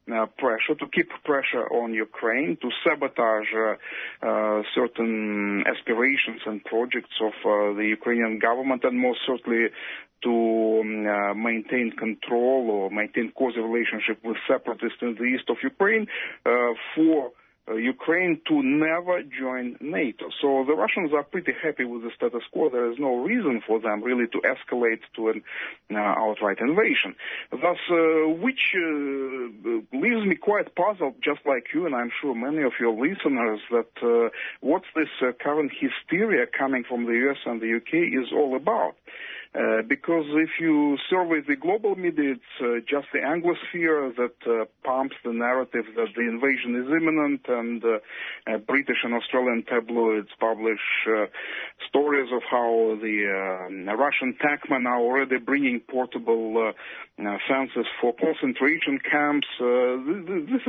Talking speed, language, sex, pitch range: 155 wpm, English, male, 115-150 Hz